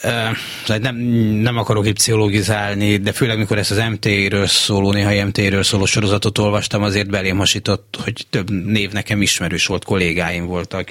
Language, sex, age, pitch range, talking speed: Hungarian, male, 30-49, 95-115 Hz, 160 wpm